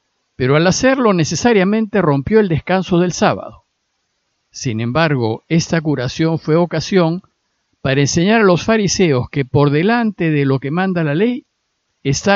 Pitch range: 135-185 Hz